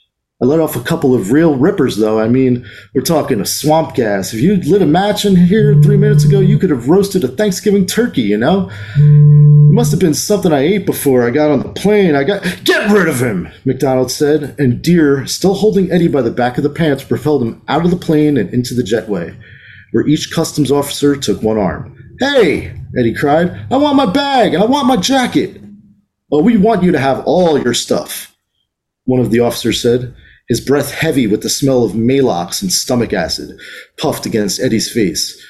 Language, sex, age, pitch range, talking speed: English, male, 30-49, 130-185 Hz, 210 wpm